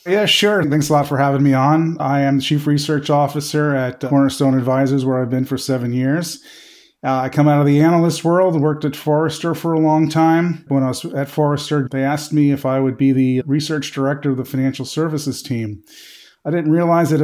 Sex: male